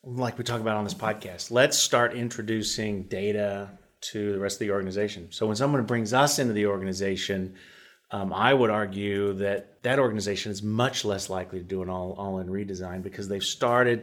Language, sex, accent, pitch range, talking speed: English, male, American, 100-120 Hz, 190 wpm